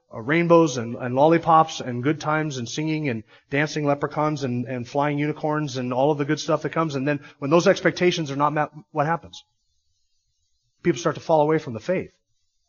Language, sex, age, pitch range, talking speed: English, male, 30-49, 125-160 Hz, 205 wpm